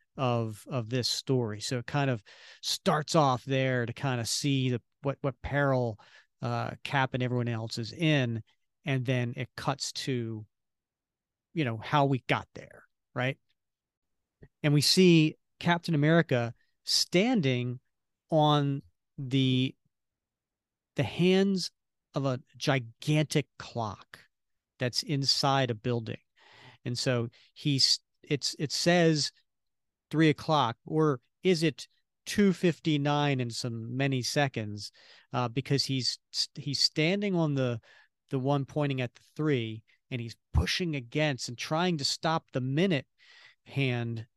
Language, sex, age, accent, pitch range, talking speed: English, male, 40-59, American, 125-150 Hz, 135 wpm